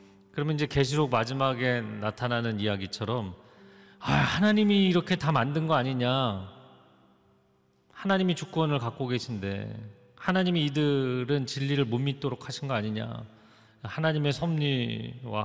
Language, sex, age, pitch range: Korean, male, 40-59, 115-160 Hz